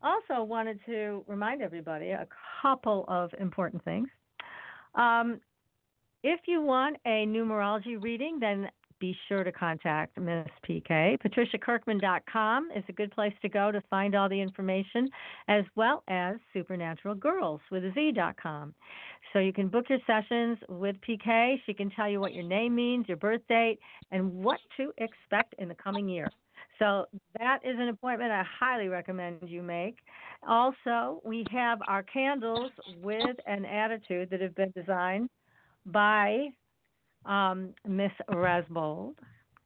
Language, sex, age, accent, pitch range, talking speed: English, female, 50-69, American, 190-240 Hz, 140 wpm